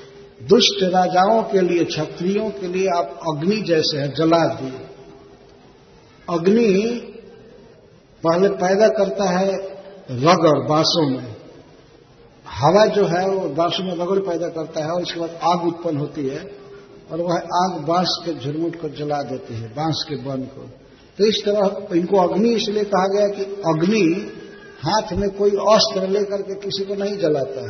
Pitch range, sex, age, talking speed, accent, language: 160-200 Hz, male, 60-79, 155 wpm, native, Hindi